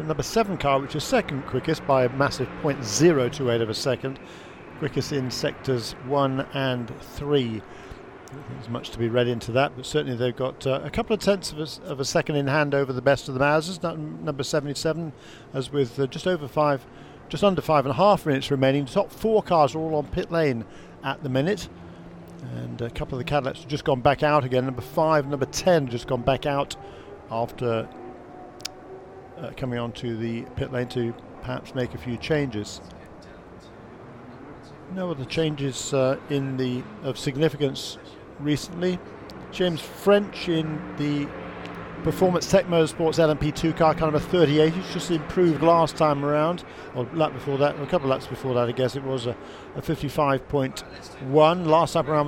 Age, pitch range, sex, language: 50-69, 130-160 Hz, male, English